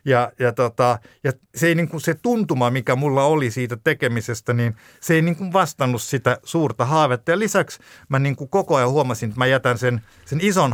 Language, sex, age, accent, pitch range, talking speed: Finnish, male, 50-69, native, 110-140 Hz, 210 wpm